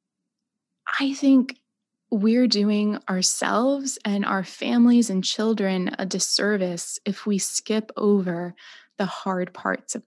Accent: American